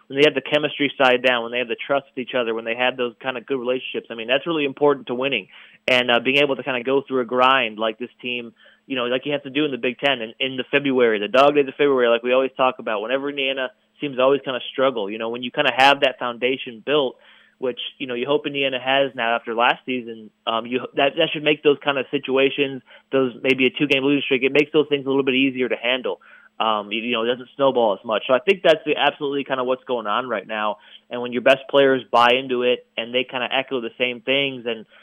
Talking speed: 280 wpm